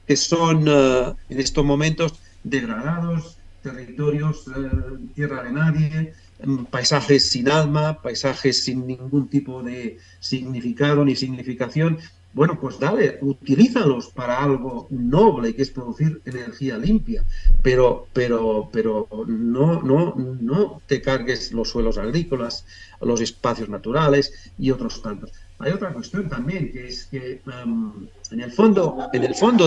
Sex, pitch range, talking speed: male, 115-150 Hz, 130 wpm